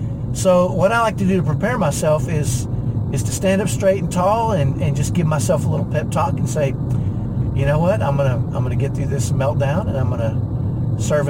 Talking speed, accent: 230 wpm, American